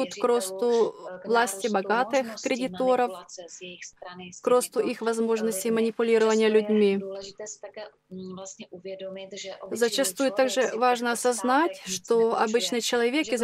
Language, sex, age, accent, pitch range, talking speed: Russian, female, 20-39, native, 205-250 Hz, 85 wpm